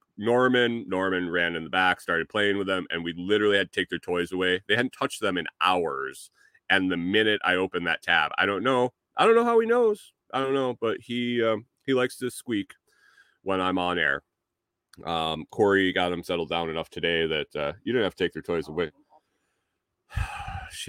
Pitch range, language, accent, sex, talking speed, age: 95-135 Hz, English, American, male, 215 wpm, 30-49